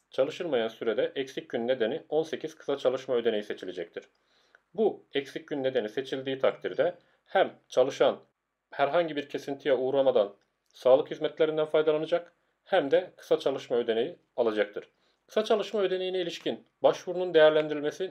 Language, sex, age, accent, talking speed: Turkish, male, 40-59, native, 125 wpm